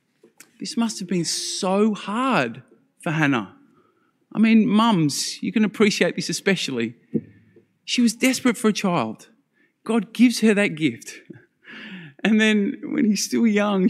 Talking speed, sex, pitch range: 145 wpm, male, 175-240 Hz